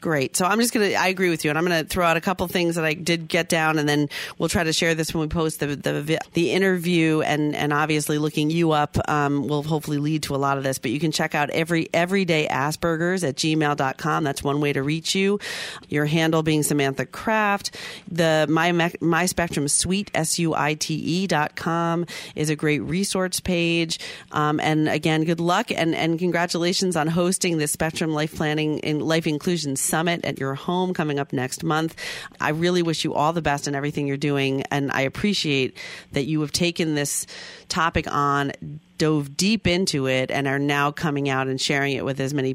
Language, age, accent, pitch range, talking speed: English, 40-59, American, 145-170 Hz, 215 wpm